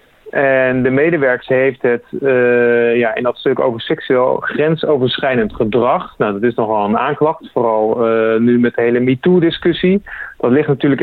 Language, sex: Dutch, male